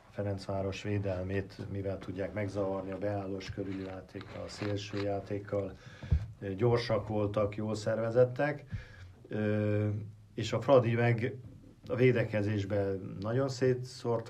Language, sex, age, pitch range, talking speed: Hungarian, male, 50-69, 100-120 Hz, 90 wpm